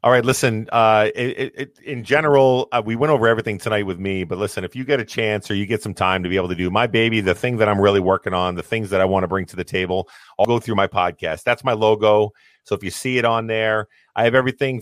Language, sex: English, male